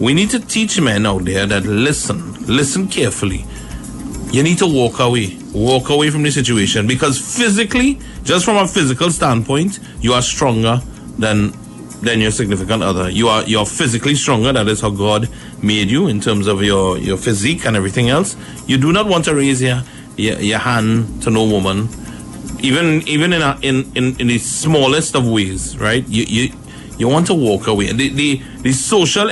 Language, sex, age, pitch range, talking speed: English, male, 30-49, 110-145 Hz, 190 wpm